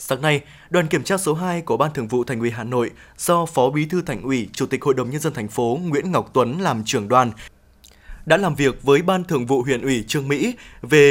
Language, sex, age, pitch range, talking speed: Vietnamese, male, 20-39, 135-170 Hz, 255 wpm